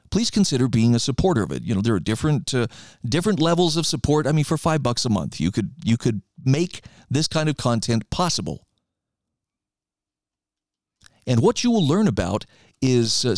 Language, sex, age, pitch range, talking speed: English, male, 50-69, 115-155 Hz, 190 wpm